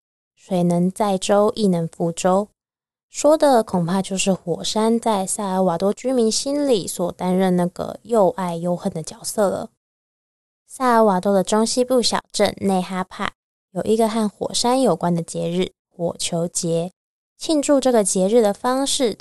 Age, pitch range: 10-29, 180-225 Hz